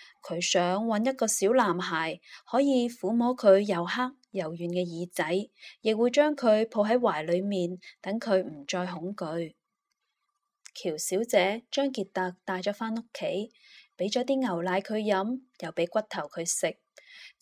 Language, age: Chinese, 20-39